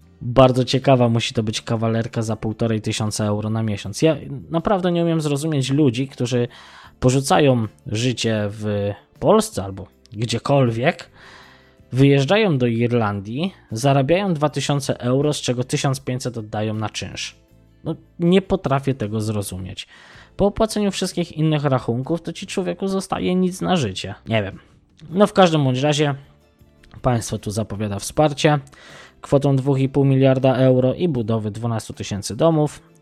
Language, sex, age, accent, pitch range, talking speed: Polish, male, 20-39, native, 110-145 Hz, 135 wpm